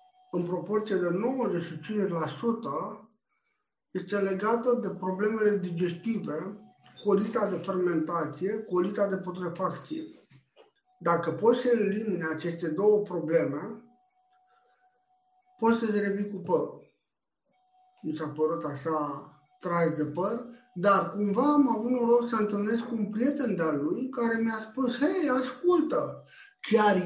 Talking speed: 115 wpm